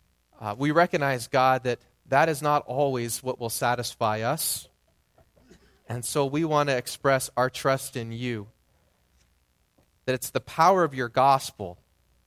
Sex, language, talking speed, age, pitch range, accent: male, English, 145 wpm, 30-49, 115-155 Hz, American